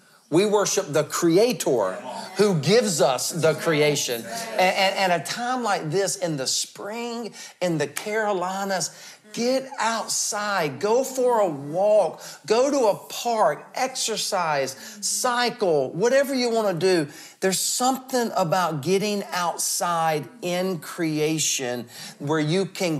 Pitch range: 160-205 Hz